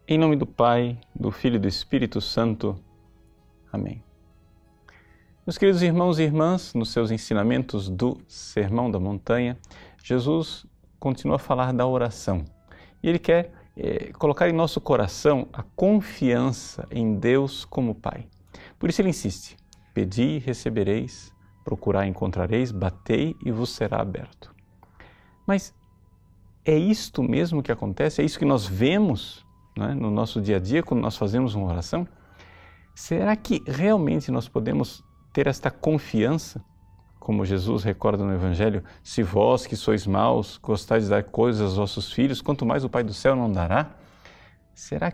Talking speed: 150 wpm